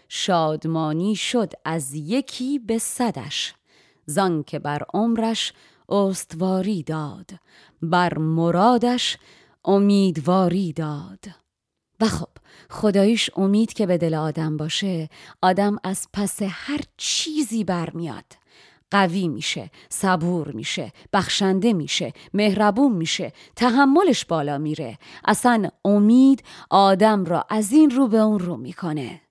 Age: 30-49